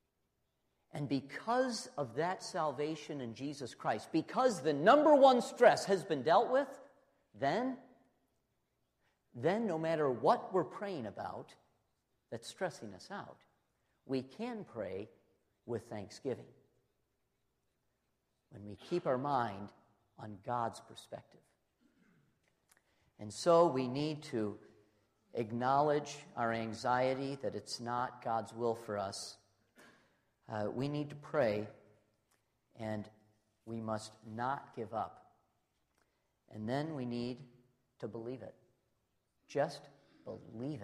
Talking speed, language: 115 wpm, English